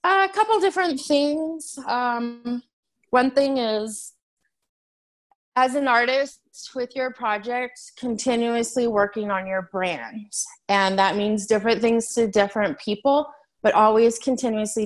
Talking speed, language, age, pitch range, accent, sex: 120 wpm, English, 20-39, 195-260 Hz, American, female